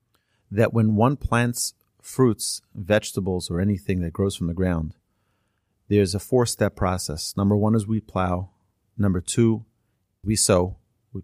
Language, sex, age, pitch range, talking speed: English, male, 30-49, 95-115 Hz, 145 wpm